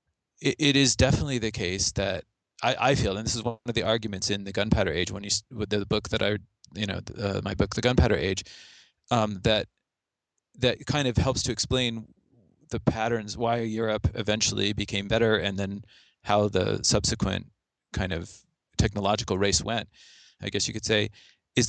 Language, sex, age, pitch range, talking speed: English, male, 30-49, 100-125 Hz, 190 wpm